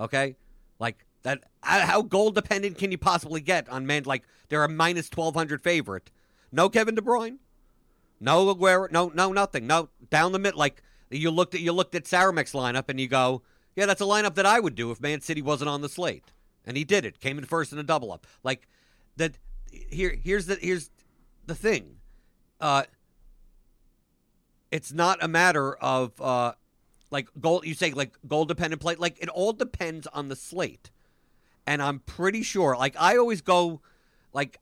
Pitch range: 130-175 Hz